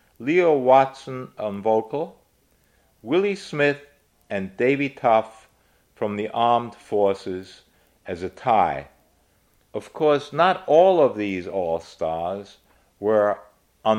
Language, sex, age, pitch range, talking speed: English, male, 50-69, 95-130 Hz, 105 wpm